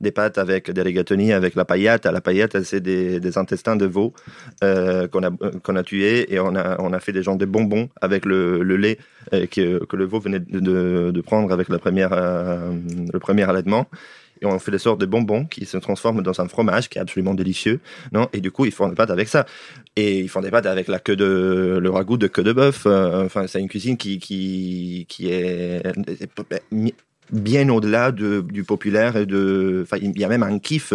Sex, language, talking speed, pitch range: male, French, 230 wpm, 95-110 Hz